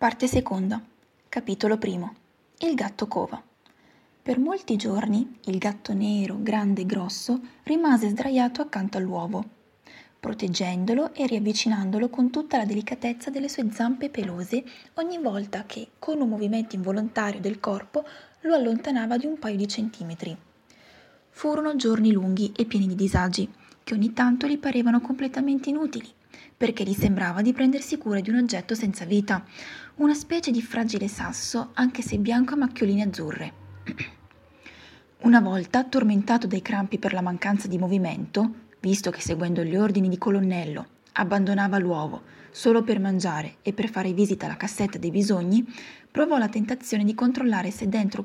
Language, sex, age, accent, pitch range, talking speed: Italian, female, 20-39, native, 195-245 Hz, 150 wpm